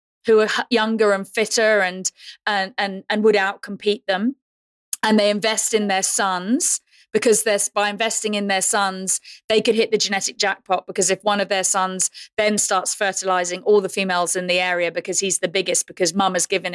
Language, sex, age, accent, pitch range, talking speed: English, female, 30-49, British, 195-230 Hz, 190 wpm